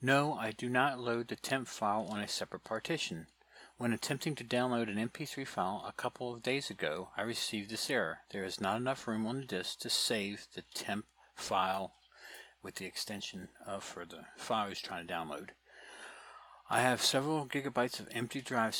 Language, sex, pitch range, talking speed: English, male, 105-130 Hz, 190 wpm